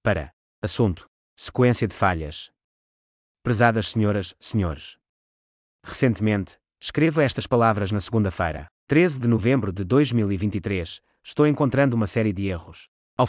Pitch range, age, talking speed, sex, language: 100-125 Hz, 20-39, 115 wpm, male, English